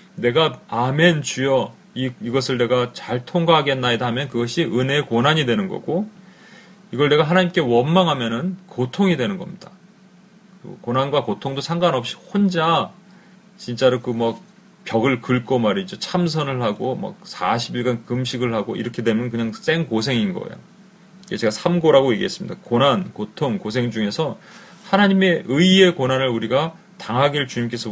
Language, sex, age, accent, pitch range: Korean, male, 30-49, native, 125-185 Hz